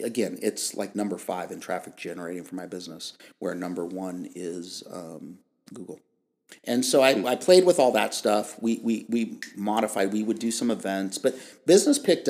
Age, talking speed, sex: 50-69, 185 wpm, male